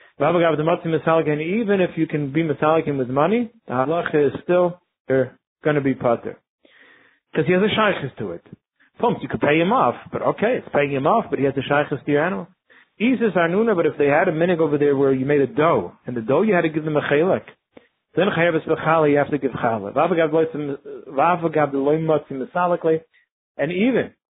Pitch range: 140-175 Hz